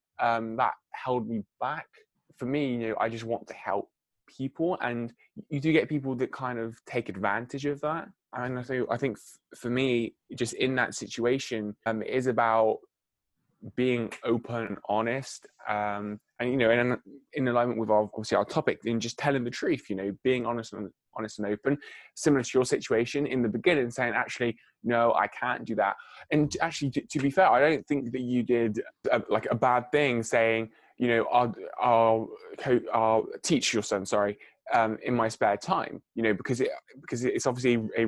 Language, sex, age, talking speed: English, male, 20-39, 200 wpm